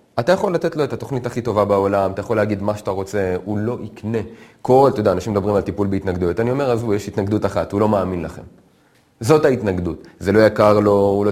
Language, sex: Hebrew, male